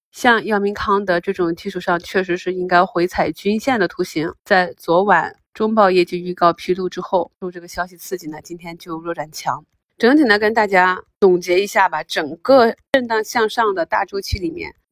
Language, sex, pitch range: Chinese, female, 170-205 Hz